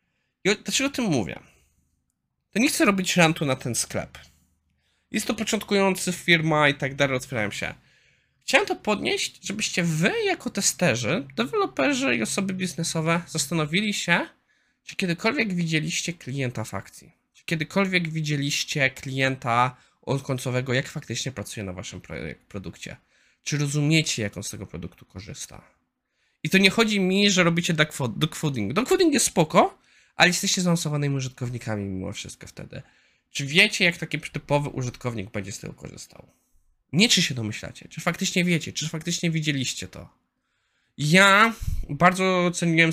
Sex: male